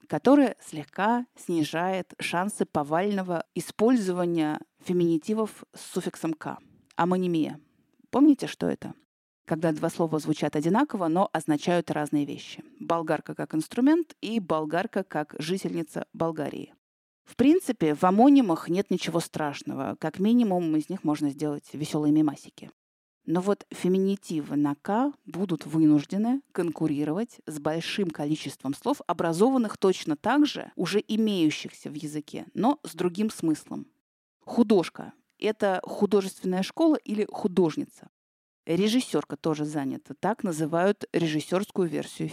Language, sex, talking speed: Russian, female, 120 wpm